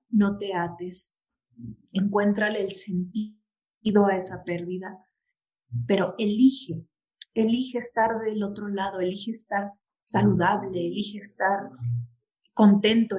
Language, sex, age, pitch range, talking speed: Spanish, female, 30-49, 170-215 Hz, 100 wpm